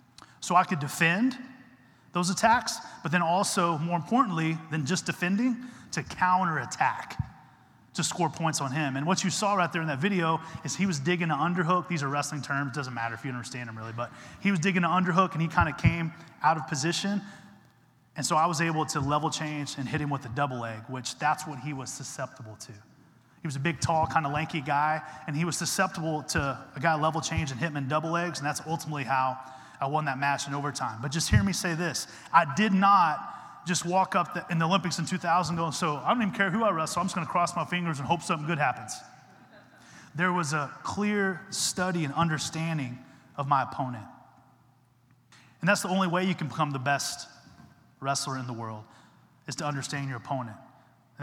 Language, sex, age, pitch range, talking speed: English, male, 30-49, 135-175 Hz, 215 wpm